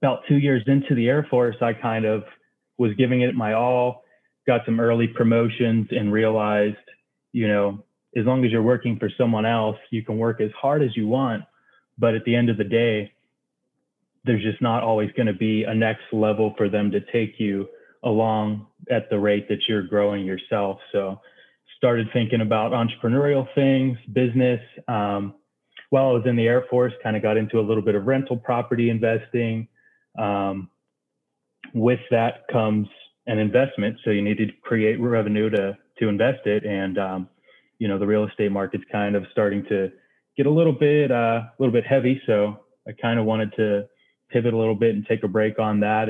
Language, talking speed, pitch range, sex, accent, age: English, 195 wpm, 105-120 Hz, male, American, 30-49